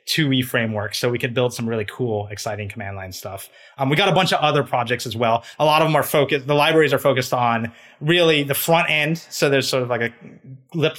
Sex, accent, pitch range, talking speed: male, American, 115-140 Hz, 245 wpm